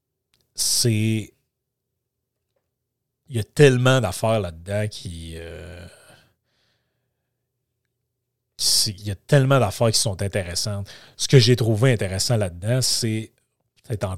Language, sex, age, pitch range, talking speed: French, male, 40-59, 105-130 Hz, 110 wpm